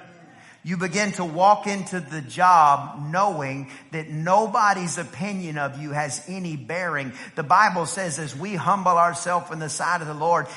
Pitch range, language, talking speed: 150-195 Hz, English, 165 wpm